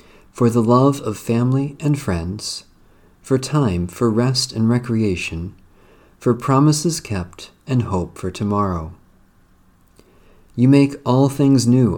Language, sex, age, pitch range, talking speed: English, male, 50-69, 90-125 Hz, 125 wpm